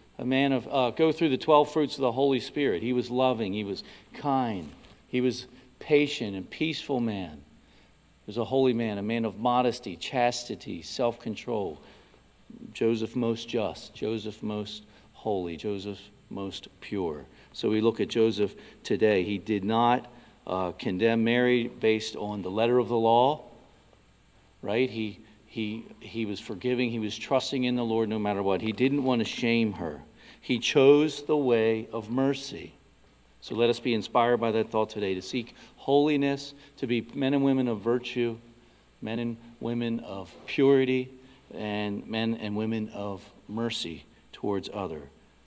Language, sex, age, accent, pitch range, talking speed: English, male, 50-69, American, 105-125 Hz, 160 wpm